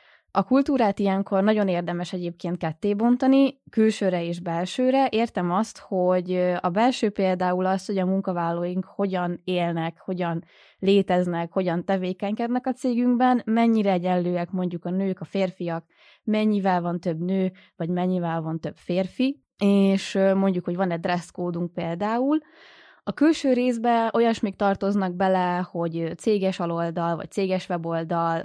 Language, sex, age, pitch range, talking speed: Hungarian, female, 20-39, 175-205 Hz, 130 wpm